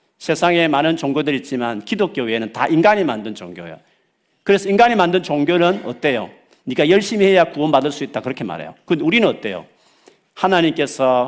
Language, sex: Korean, male